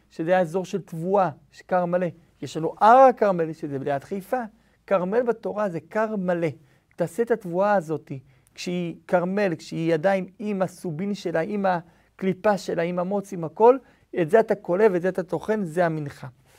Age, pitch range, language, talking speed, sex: 50-69, 165-210 Hz, Hebrew, 175 wpm, male